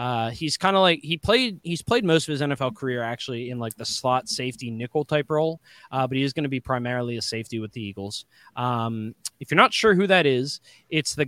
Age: 20-39